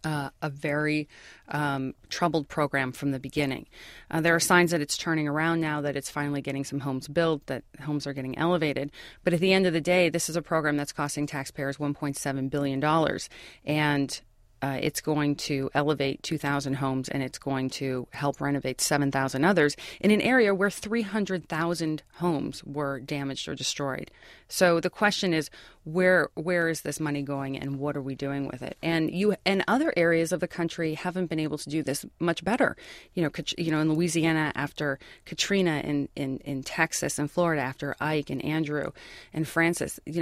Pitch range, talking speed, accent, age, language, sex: 140-170 Hz, 190 wpm, American, 30-49, English, female